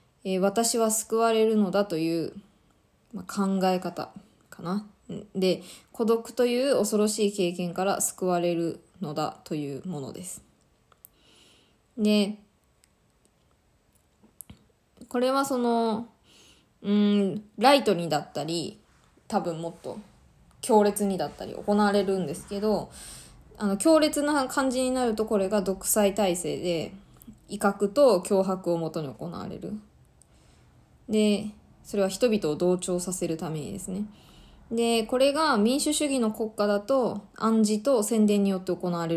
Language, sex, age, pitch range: Japanese, female, 20-39, 185-225 Hz